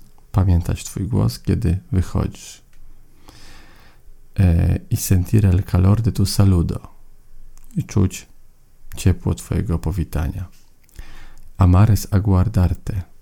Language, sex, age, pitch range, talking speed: Spanish, male, 40-59, 90-105 Hz, 90 wpm